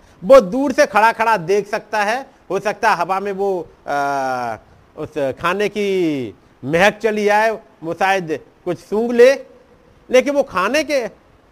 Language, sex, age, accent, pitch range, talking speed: Hindi, male, 50-69, native, 160-235 Hz, 140 wpm